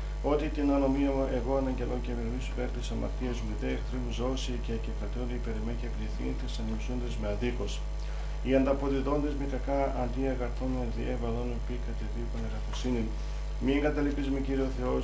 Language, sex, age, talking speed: Greek, male, 40-59, 130 wpm